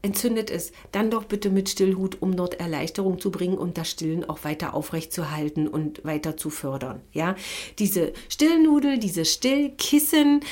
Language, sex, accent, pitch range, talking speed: German, female, German, 185-245 Hz, 160 wpm